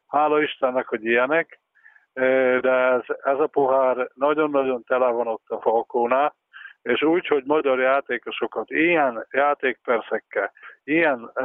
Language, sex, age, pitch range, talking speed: Hungarian, male, 50-69, 125-150 Hz, 120 wpm